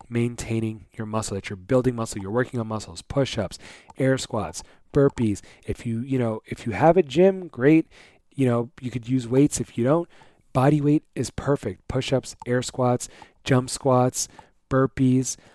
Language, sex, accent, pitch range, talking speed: English, male, American, 110-130 Hz, 170 wpm